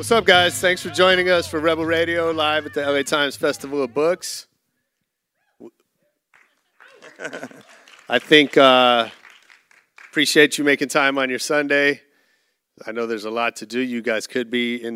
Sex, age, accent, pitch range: male, 40-59, American, 105-135 Hz